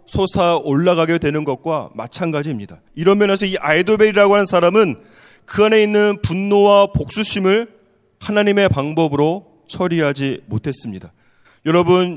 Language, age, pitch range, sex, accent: Korean, 30-49, 150-190 Hz, male, native